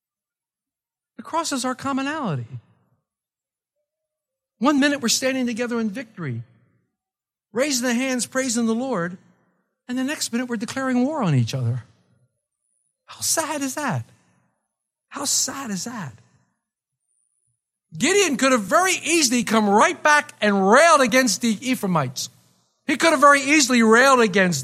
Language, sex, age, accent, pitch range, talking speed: English, male, 50-69, American, 185-270 Hz, 130 wpm